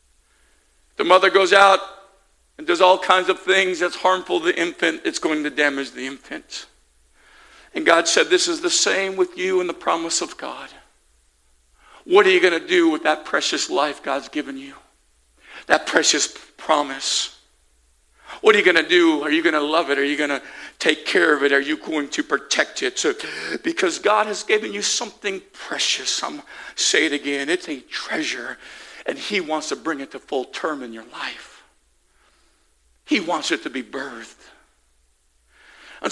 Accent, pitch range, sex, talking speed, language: American, 140-230 Hz, male, 190 wpm, English